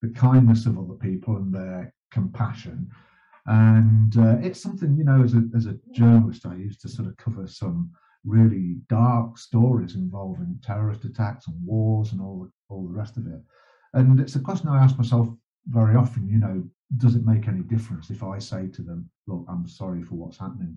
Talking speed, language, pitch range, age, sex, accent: 200 wpm, English, 105-125 Hz, 50-69, male, British